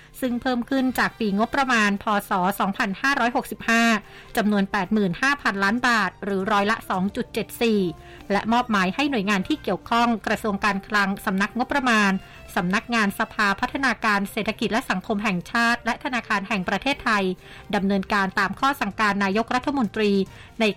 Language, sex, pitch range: Thai, female, 200-240 Hz